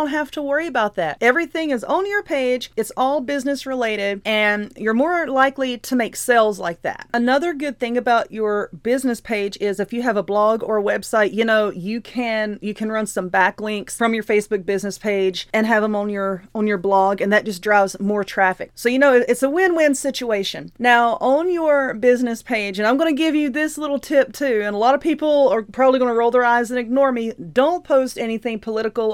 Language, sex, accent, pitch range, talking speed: English, female, American, 215-265 Hz, 220 wpm